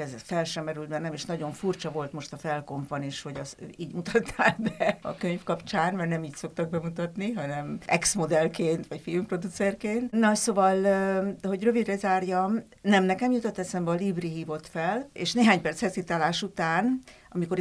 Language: Hungarian